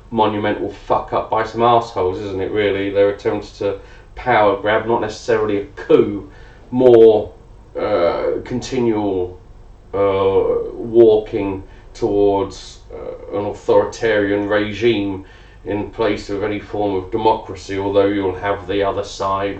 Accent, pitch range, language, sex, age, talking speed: British, 100-120 Hz, English, male, 30-49, 125 wpm